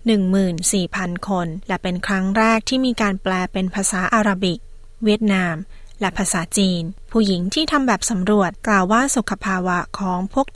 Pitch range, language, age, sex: 185-220 Hz, Thai, 20-39, female